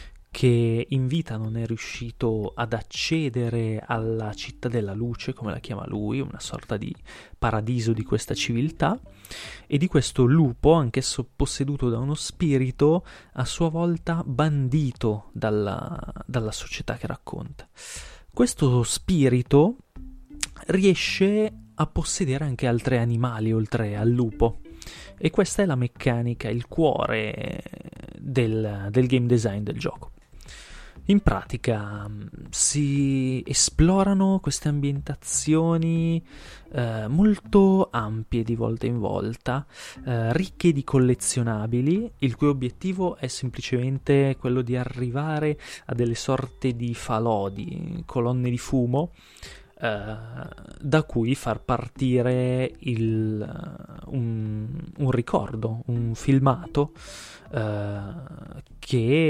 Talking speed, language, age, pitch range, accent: 110 wpm, Italian, 30-49, 115-150 Hz, native